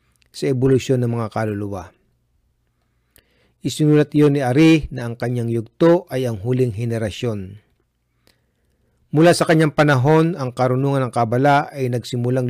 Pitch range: 115-150 Hz